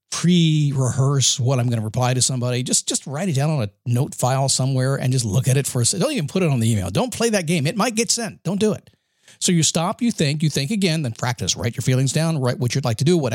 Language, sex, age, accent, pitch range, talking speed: English, male, 50-69, American, 125-175 Hz, 290 wpm